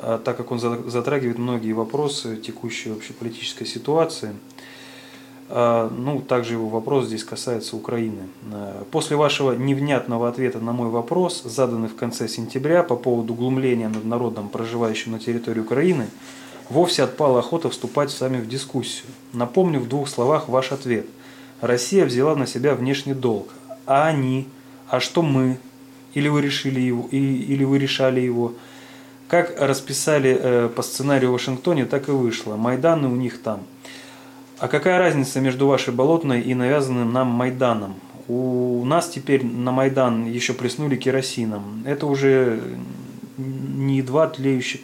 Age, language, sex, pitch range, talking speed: 20-39, Russian, male, 120-135 Hz, 140 wpm